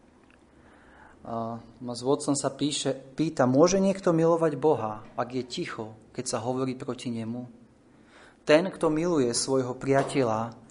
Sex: male